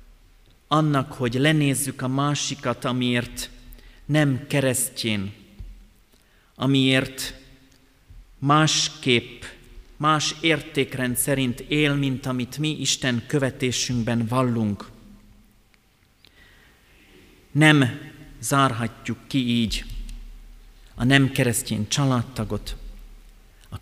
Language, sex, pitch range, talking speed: Hungarian, male, 100-130 Hz, 75 wpm